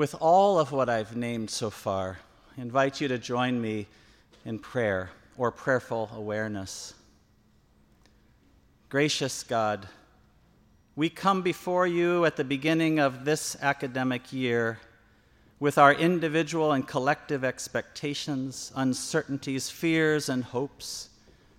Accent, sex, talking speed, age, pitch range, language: American, male, 115 wpm, 50-69, 110-145 Hz, English